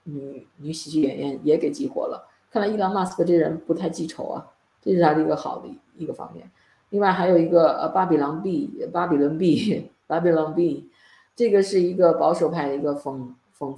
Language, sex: Chinese, female